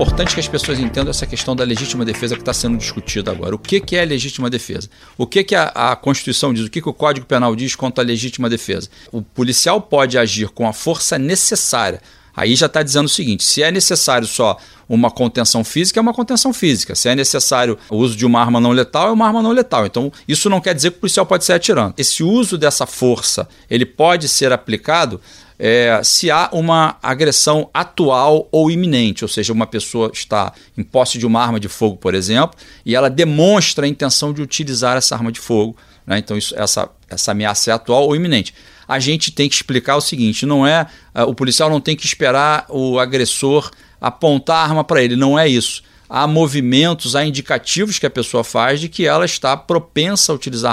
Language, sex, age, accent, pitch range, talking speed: Portuguese, male, 40-59, Brazilian, 120-155 Hz, 210 wpm